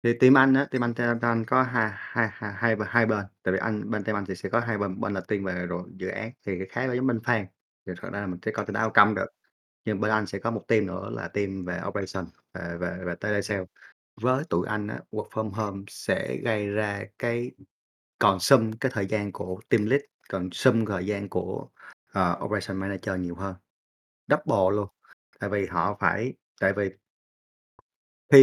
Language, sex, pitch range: Vietnamese, male, 95-115 Hz